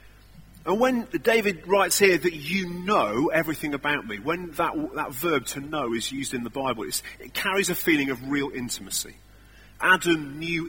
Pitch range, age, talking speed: 105-175 Hz, 40-59, 180 wpm